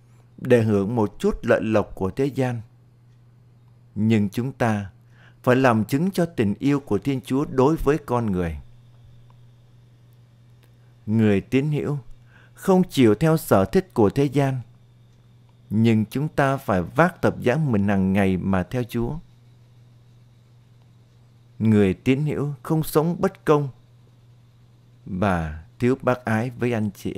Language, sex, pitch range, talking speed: Vietnamese, male, 115-130 Hz, 140 wpm